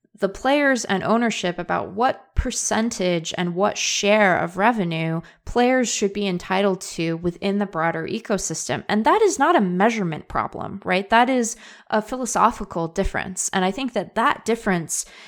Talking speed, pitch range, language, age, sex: 155 wpm, 175-230 Hz, English, 20-39, female